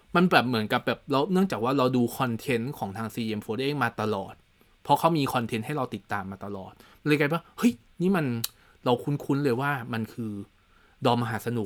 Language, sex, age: Thai, male, 20-39